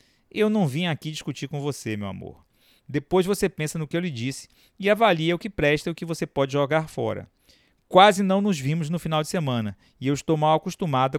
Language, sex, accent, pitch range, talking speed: Portuguese, male, Brazilian, 125-155 Hz, 225 wpm